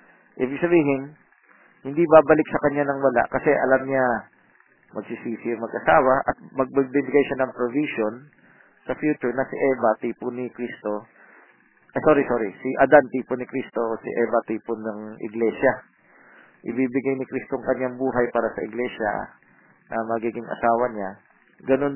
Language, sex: Filipino, male